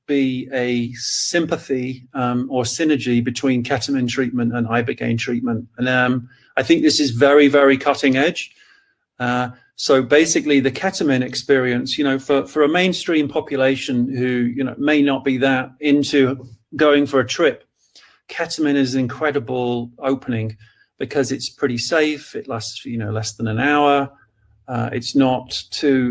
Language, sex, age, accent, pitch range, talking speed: English, male, 40-59, British, 125-145 Hz, 150 wpm